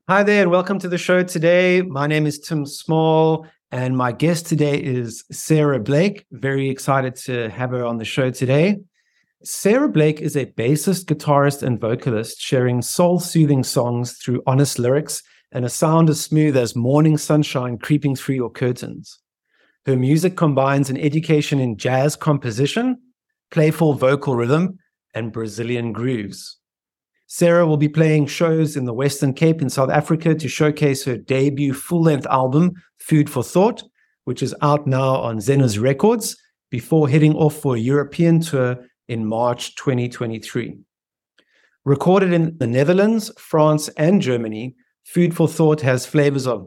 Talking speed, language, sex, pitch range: 155 wpm, English, male, 130-160 Hz